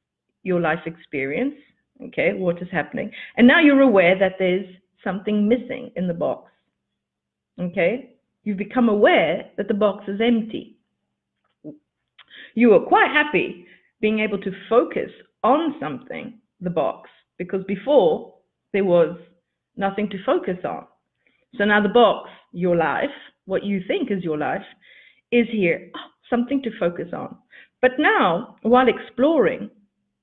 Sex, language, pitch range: female, English, 180-245 Hz